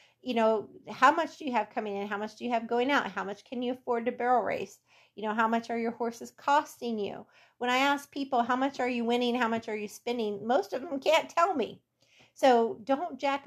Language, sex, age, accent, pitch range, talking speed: English, female, 40-59, American, 205-245 Hz, 250 wpm